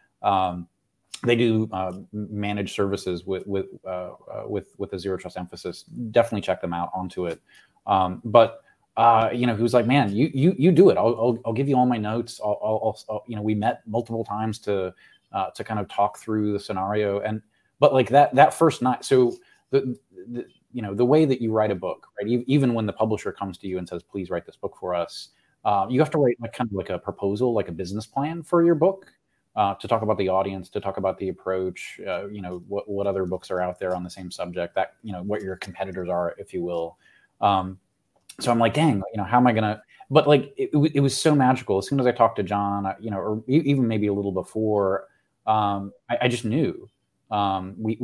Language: English